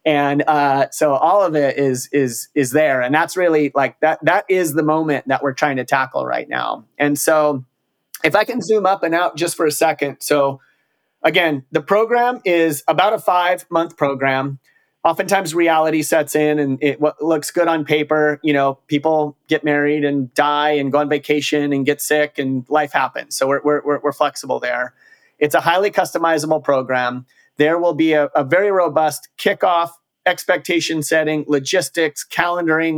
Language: English